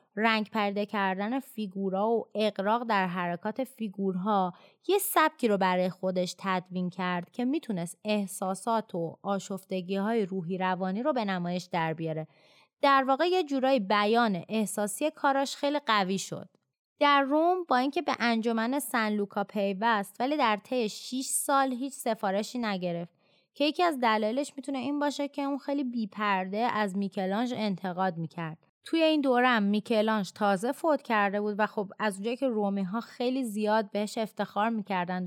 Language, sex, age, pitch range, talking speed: Persian, female, 20-39, 190-250 Hz, 155 wpm